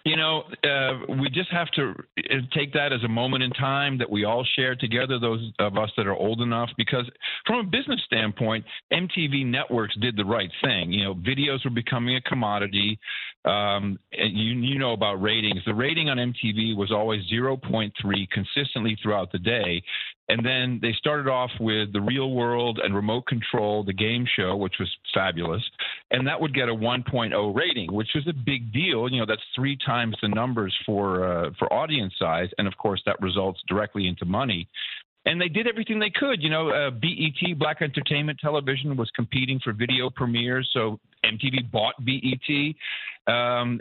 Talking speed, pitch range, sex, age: 185 wpm, 110-135 Hz, male, 50-69